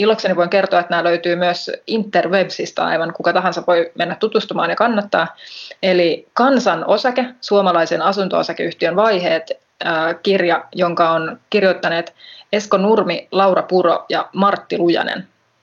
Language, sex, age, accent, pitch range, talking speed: Finnish, female, 20-39, native, 170-200 Hz, 130 wpm